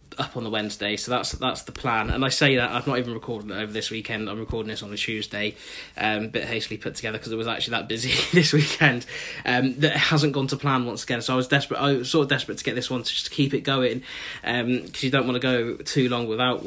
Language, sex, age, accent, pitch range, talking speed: English, male, 10-29, British, 115-135 Hz, 275 wpm